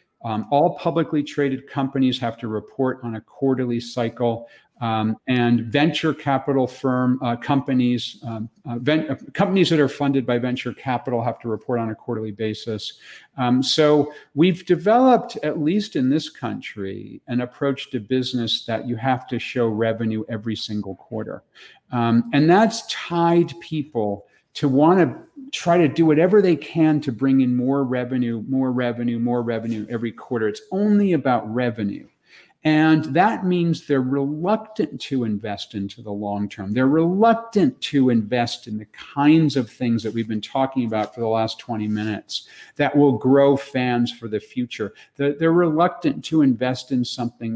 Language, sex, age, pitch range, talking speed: English, male, 50-69, 115-145 Hz, 165 wpm